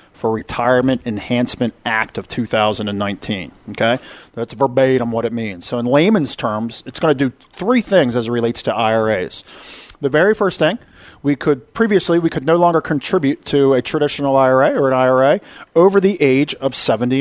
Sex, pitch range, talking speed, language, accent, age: male, 115-145 Hz, 180 wpm, English, American, 40-59